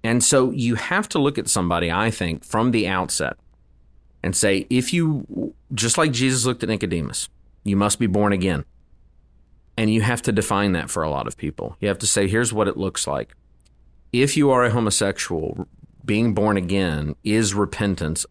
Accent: American